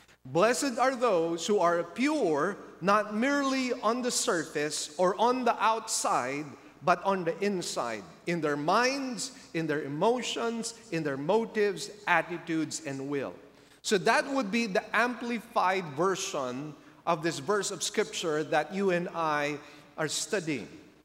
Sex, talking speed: male, 140 wpm